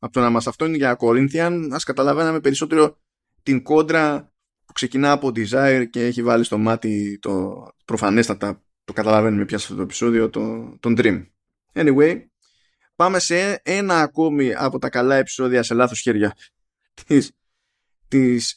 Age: 20-39